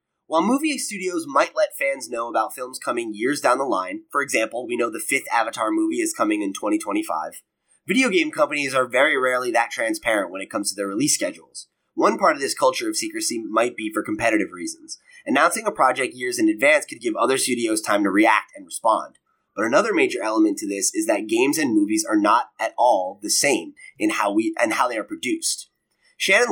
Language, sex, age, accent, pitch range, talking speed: English, male, 20-39, American, 300-340 Hz, 215 wpm